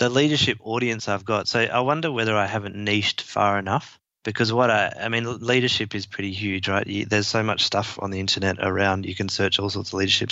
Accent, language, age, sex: Australian, English, 20-39, male